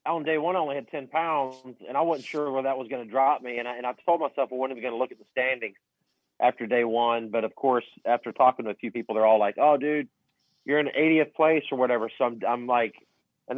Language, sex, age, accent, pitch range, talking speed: English, male, 40-59, American, 130-160 Hz, 280 wpm